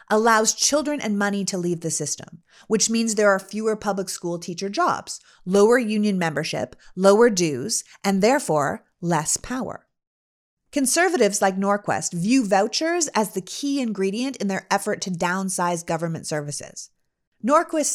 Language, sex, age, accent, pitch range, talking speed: English, female, 30-49, American, 175-245 Hz, 145 wpm